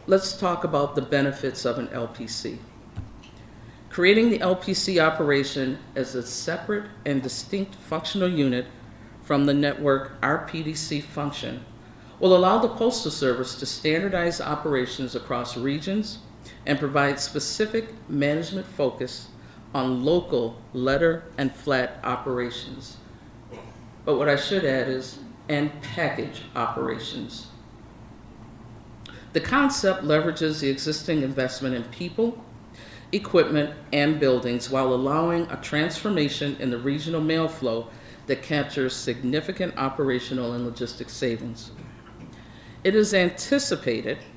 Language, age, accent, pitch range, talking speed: English, 50-69, American, 125-165 Hz, 115 wpm